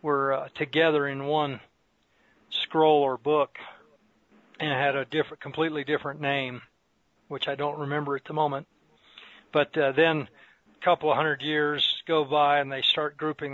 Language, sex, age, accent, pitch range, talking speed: English, male, 40-59, American, 140-155 Hz, 160 wpm